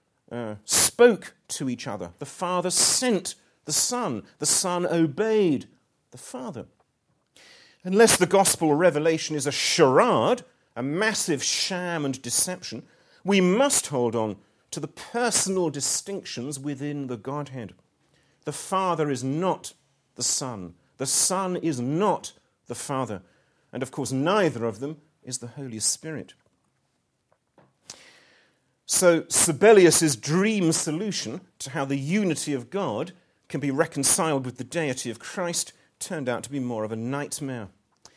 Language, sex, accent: English, male, British